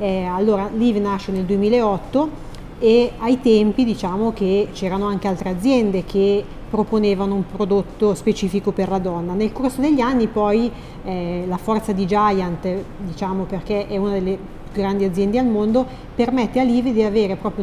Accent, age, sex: native, 40-59, female